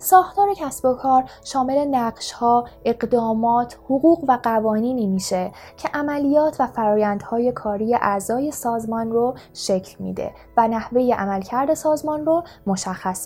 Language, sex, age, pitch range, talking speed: Persian, female, 20-39, 215-290 Hz, 120 wpm